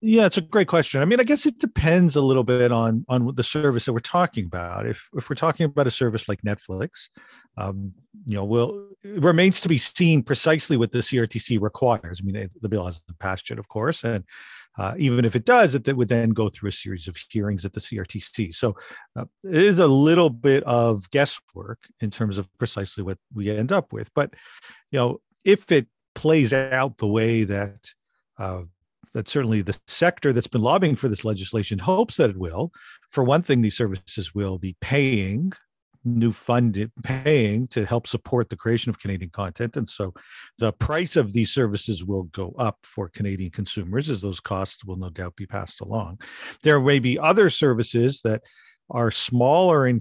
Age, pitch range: 50-69, 105-140 Hz